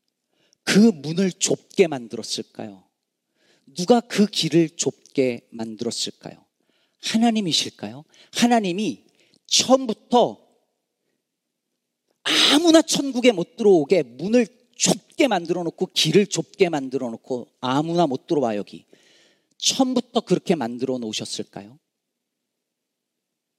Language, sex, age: Korean, male, 40-59